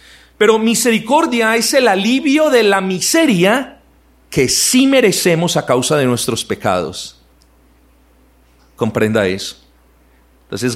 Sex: male